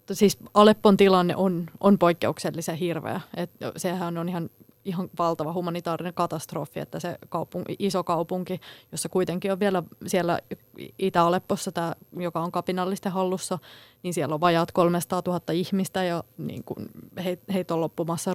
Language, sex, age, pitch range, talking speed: Finnish, female, 20-39, 170-195 Hz, 145 wpm